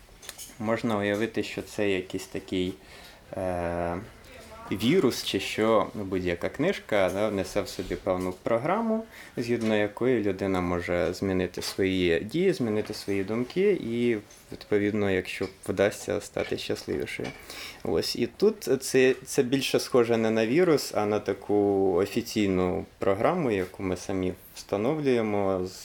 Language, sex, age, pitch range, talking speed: Ukrainian, male, 20-39, 95-110 Hz, 130 wpm